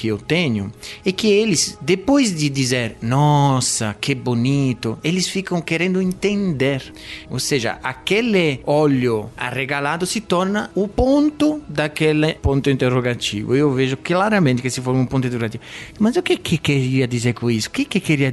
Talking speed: 155 wpm